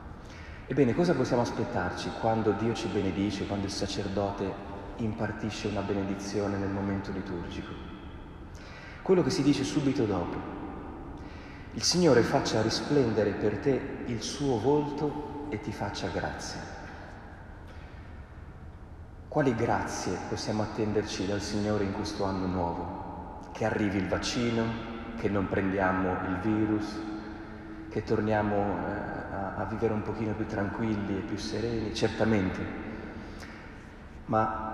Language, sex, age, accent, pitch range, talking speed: Italian, male, 40-59, native, 95-115 Hz, 120 wpm